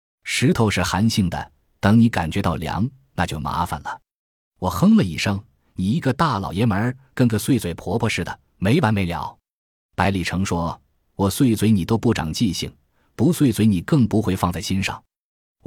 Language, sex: Chinese, male